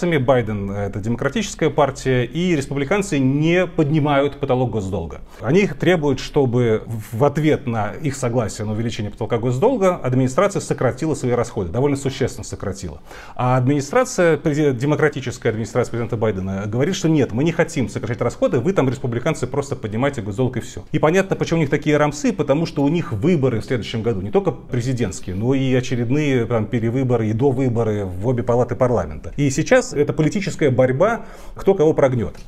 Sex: male